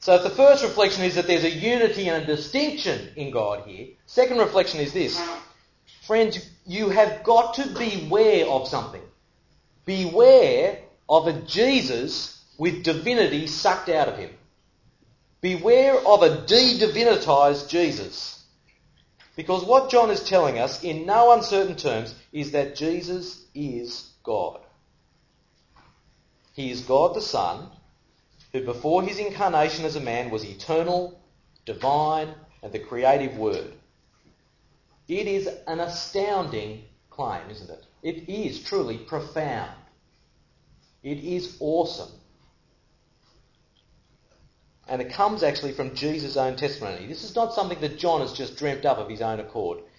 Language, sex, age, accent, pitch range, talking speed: English, male, 40-59, Australian, 145-215 Hz, 135 wpm